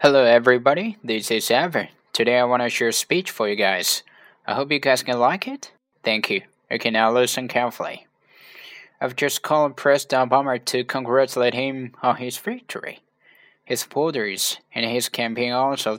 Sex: male